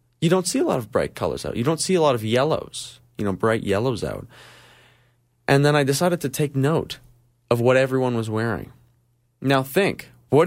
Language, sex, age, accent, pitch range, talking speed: English, male, 20-39, American, 115-165 Hz, 205 wpm